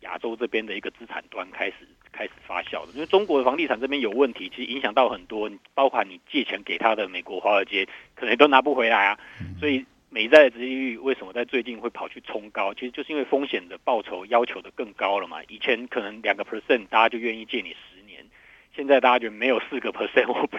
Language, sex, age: Chinese, male, 50-69